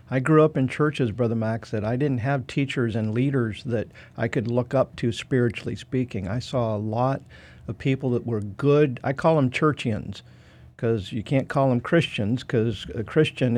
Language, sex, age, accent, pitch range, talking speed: English, male, 50-69, American, 115-135 Hz, 190 wpm